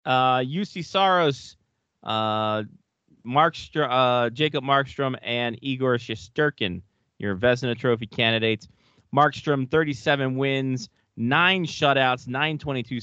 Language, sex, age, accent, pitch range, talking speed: English, male, 30-49, American, 100-130 Hz, 100 wpm